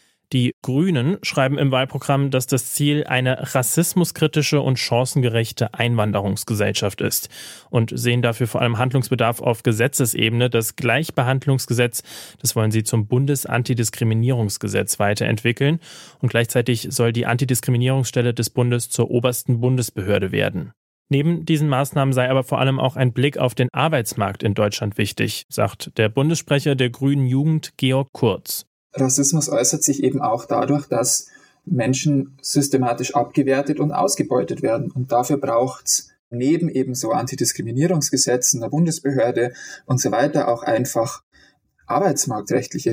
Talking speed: 130 wpm